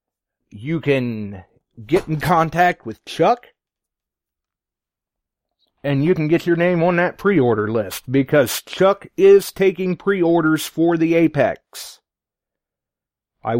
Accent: American